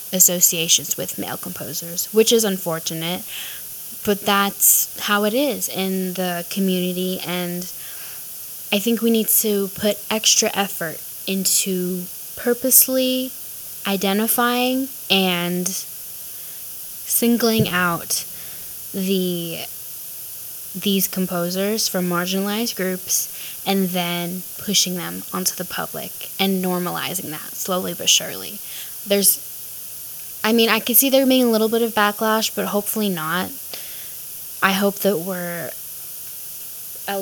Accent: American